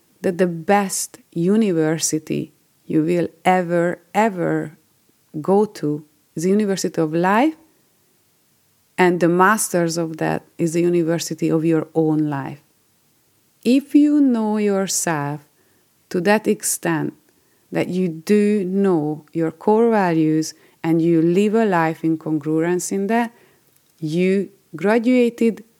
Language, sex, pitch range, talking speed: English, female, 155-195 Hz, 120 wpm